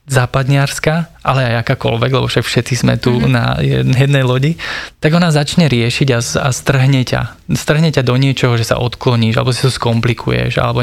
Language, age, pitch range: Slovak, 20-39, 120-140 Hz